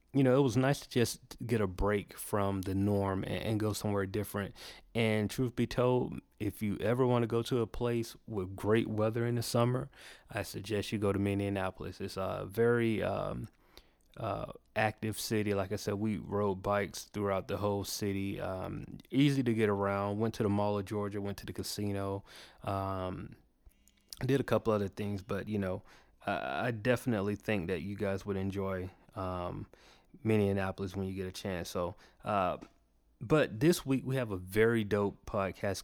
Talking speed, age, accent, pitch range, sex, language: 185 wpm, 30-49, American, 100-115 Hz, male, English